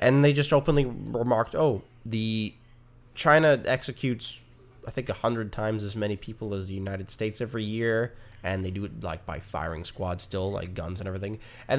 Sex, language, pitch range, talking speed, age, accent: male, English, 95-125 Hz, 190 wpm, 10-29, American